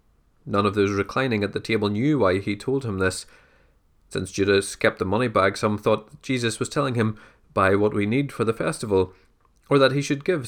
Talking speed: 210 wpm